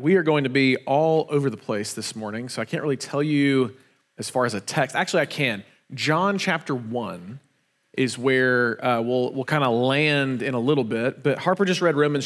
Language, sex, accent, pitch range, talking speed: English, male, American, 135-165 Hz, 220 wpm